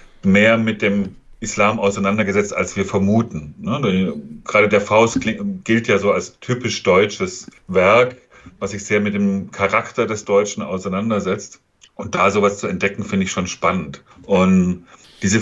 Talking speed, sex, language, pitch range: 150 wpm, male, German, 95-115 Hz